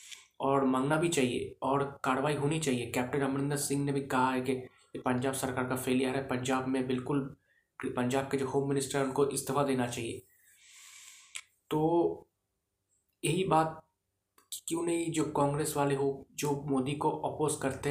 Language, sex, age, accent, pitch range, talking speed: Hindi, male, 20-39, native, 130-145 Hz, 160 wpm